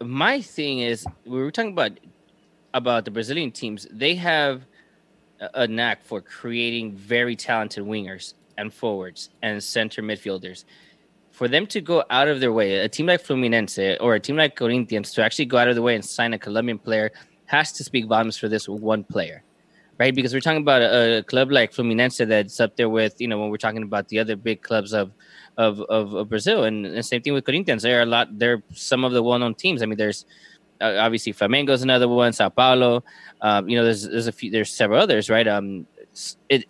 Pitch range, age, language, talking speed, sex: 110-135 Hz, 20-39, English, 215 wpm, male